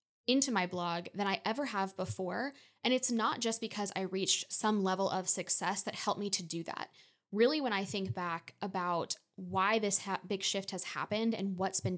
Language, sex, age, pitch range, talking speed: English, female, 10-29, 190-225 Hz, 200 wpm